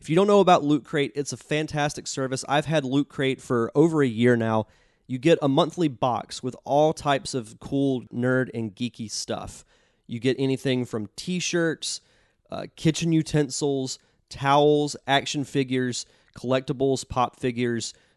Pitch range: 120-150 Hz